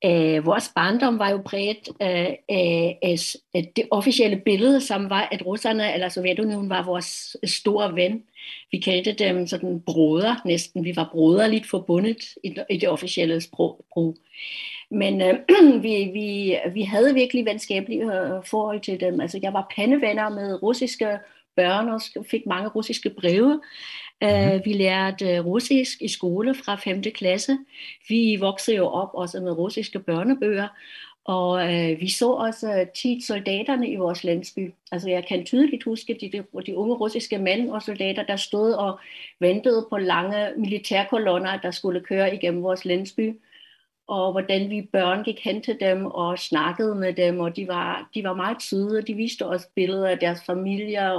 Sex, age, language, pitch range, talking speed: female, 60-79, Danish, 180-220 Hz, 155 wpm